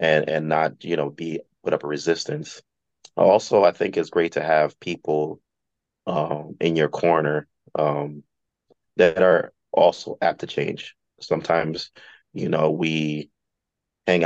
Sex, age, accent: male, 30-49, American